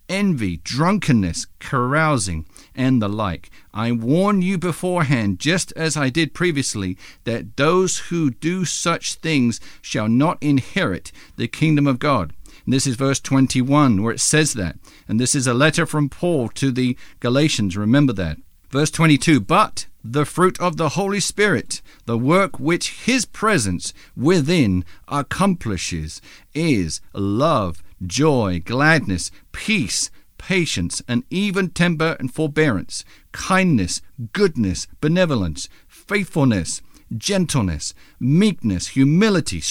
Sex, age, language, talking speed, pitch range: male, 50-69, English, 125 wpm, 105-170 Hz